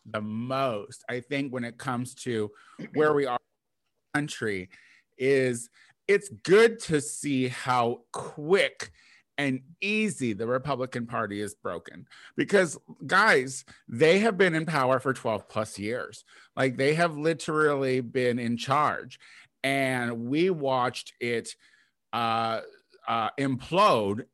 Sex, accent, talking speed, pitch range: male, American, 130 wpm, 120-165 Hz